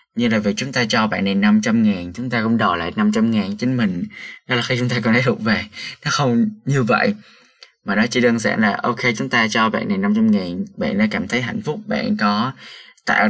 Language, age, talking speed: Vietnamese, 20-39, 250 wpm